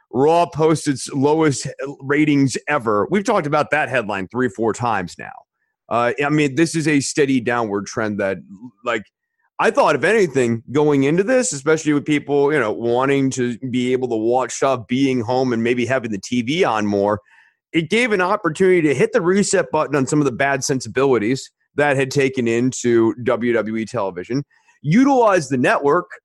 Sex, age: male, 30-49